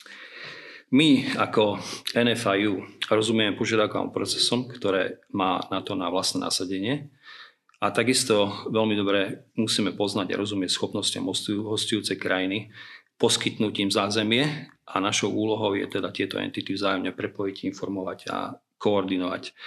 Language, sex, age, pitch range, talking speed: Slovak, male, 40-59, 100-115 Hz, 115 wpm